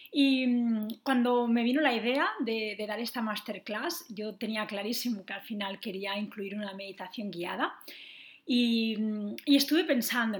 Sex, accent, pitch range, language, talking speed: female, Spanish, 225-285 Hz, Spanish, 150 wpm